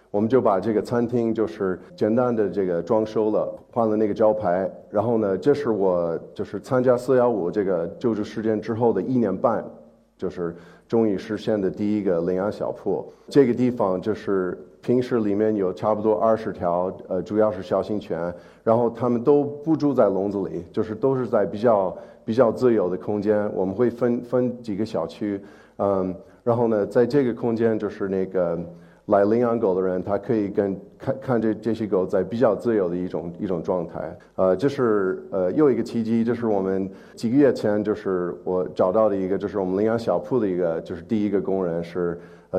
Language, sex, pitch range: Chinese, male, 95-115 Hz